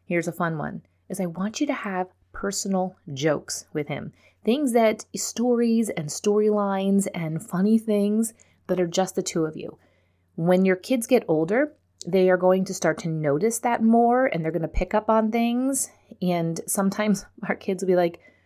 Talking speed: 190 wpm